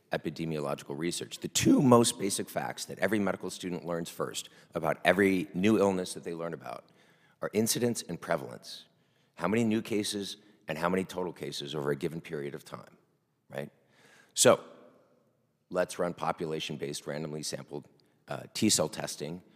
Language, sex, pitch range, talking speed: English, male, 80-95 Hz, 155 wpm